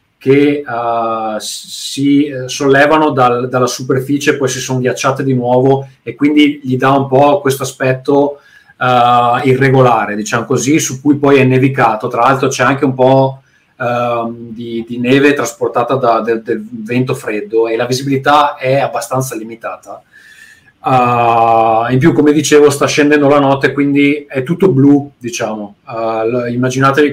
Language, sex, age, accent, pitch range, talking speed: Italian, male, 30-49, native, 120-145 Hz, 135 wpm